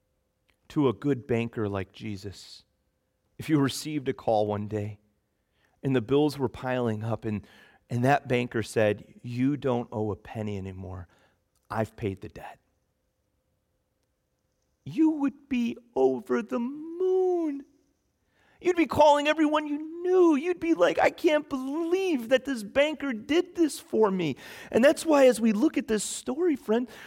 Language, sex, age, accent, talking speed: English, male, 40-59, American, 155 wpm